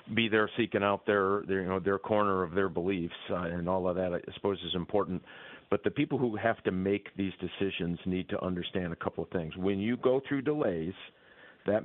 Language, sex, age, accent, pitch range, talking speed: English, male, 50-69, American, 90-105 Hz, 225 wpm